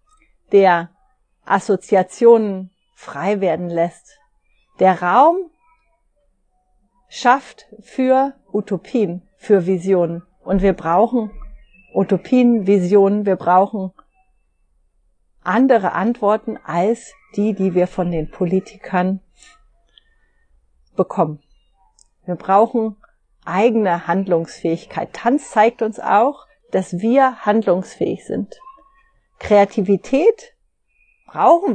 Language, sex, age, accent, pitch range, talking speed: German, female, 40-59, German, 185-250 Hz, 80 wpm